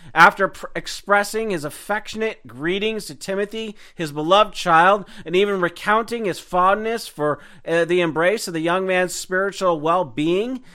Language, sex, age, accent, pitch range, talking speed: English, male, 40-59, American, 165-210 Hz, 140 wpm